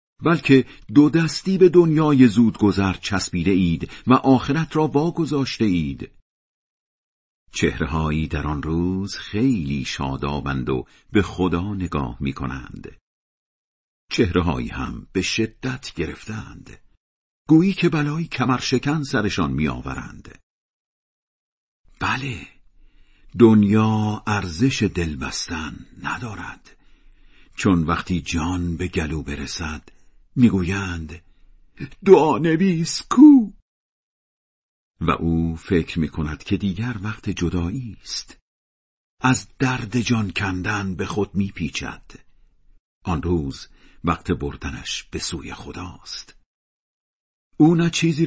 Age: 50-69